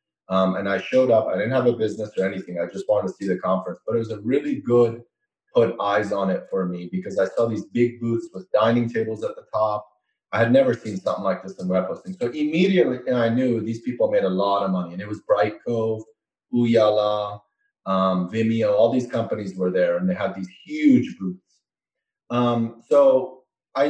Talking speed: 215 wpm